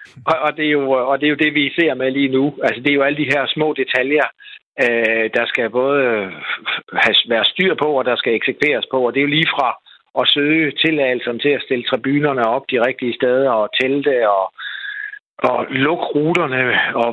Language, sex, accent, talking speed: Danish, male, native, 205 wpm